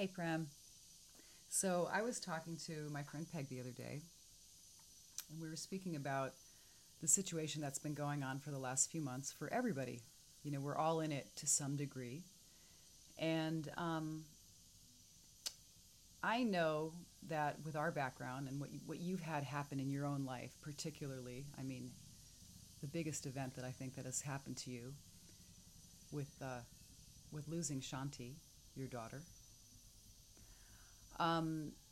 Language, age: English, 30-49